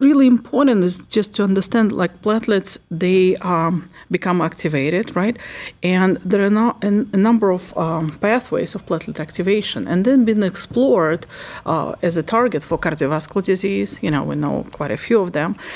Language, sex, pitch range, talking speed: English, female, 165-210 Hz, 170 wpm